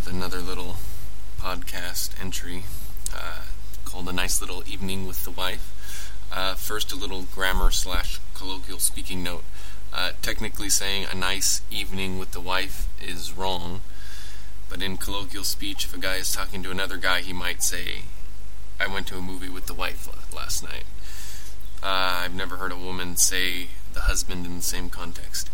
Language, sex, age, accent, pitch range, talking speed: English, male, 20-39, American, 90-100 Hz, 165 wpm